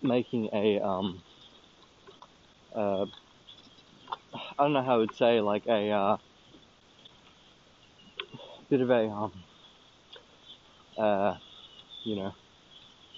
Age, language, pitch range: 20-39, English, 105-120 Hz